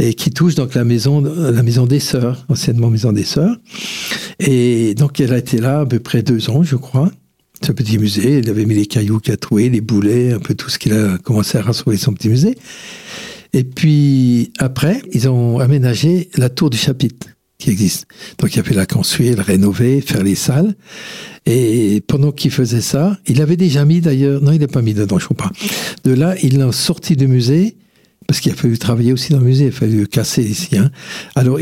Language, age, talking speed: French, 60-79, 225 wpm